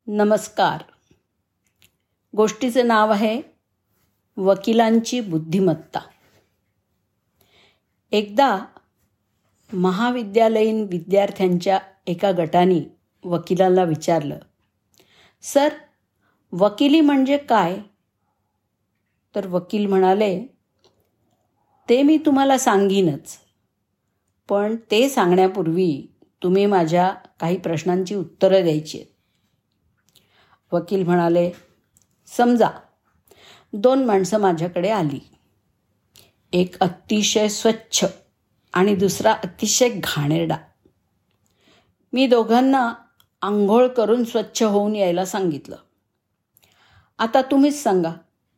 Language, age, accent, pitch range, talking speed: Marathi, 50-69, native, 135-220 Hz, 70 wpm